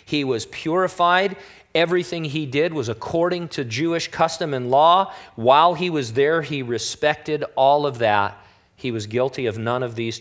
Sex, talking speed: male, 170 wpm